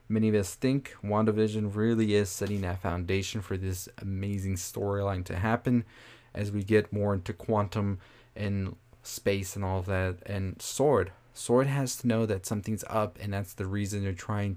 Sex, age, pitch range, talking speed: male, 20-39, 95-115 Hz, 175 wpm